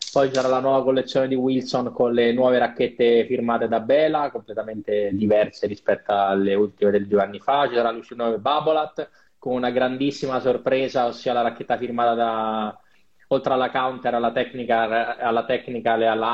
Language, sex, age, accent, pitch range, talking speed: Italian, male, 20-39, native, 110-135 Hz, 170 wpm